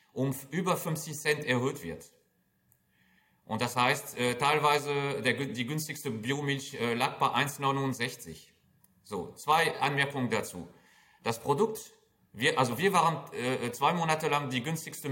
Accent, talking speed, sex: German, 140 wpm, male